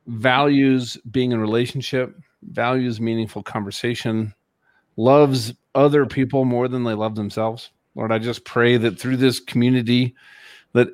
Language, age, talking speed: English, 40-59, 130 wpm